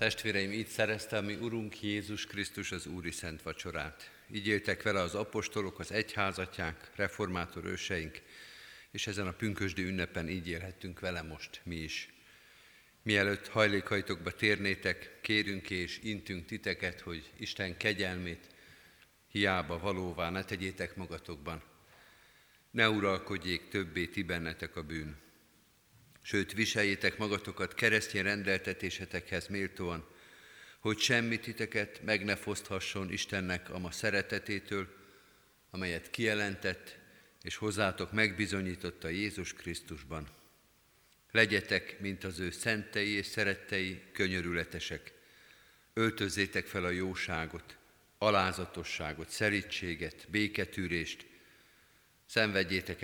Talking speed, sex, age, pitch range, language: 105 wpm, male, 50-69, 85-105 Hz, Hungarian